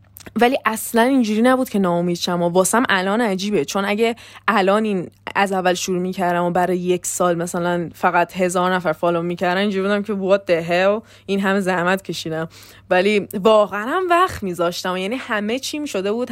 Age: 20-39